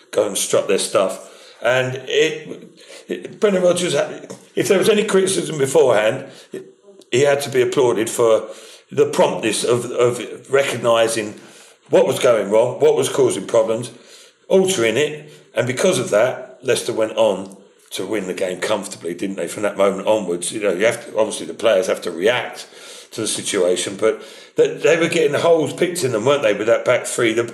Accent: British